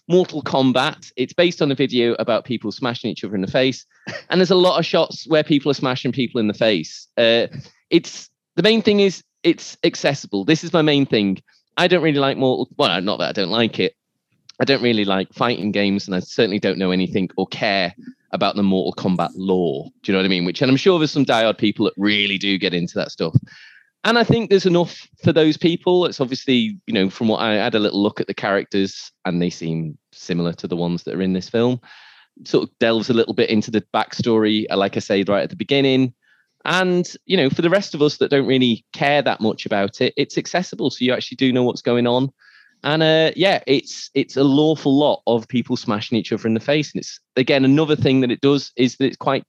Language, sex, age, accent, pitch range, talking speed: English, male, 30-49, British, 105-150 Hz, 240 wpm